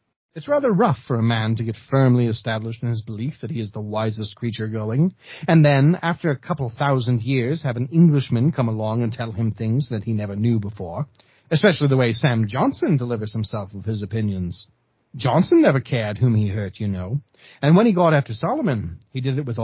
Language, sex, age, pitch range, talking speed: English, male, 30-49, 110-160 Hz, 210 wpm